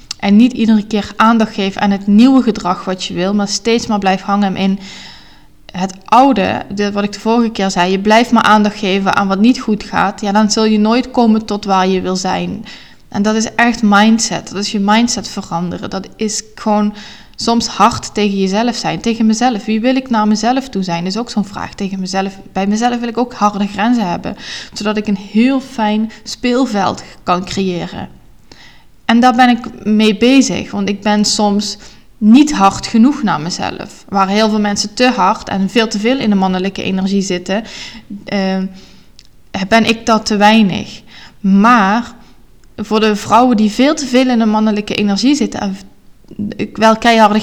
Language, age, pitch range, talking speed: Dutch, 20-39, 200-230 Hz, 190 wpm